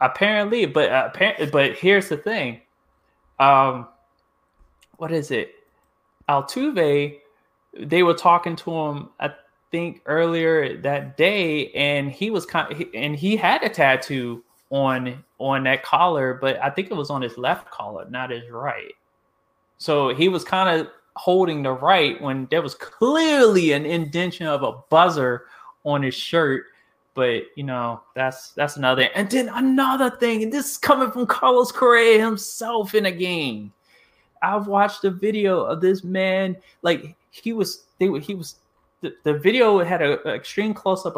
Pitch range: 135-195 Hz